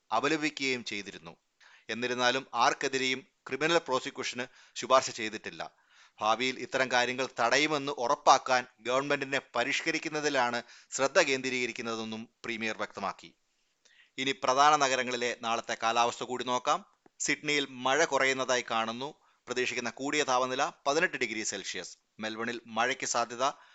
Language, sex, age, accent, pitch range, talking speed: Malayalam, male, 30-49, native, 115-135 Hz, 100 wpm